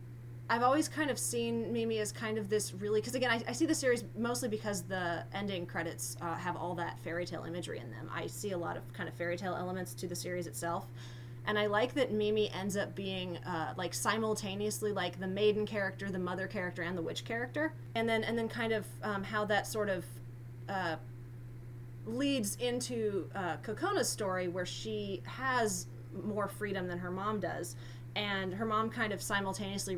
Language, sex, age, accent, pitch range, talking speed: English, female, 20-39, American, 120-200 Hz, 200 wpm